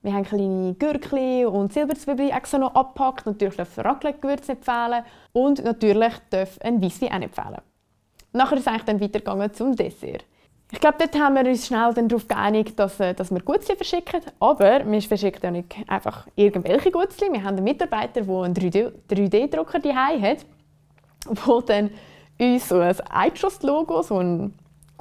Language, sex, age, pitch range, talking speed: German, female, 20-39, 185-260 Hz, 165 wpm